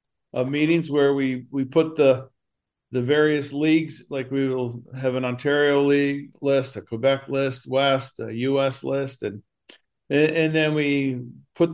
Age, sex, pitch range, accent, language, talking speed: 50-69, male, 130-150 Hz, American, English, 150 wpm